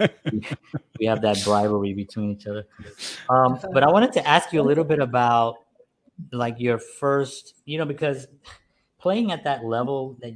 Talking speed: 170 wpm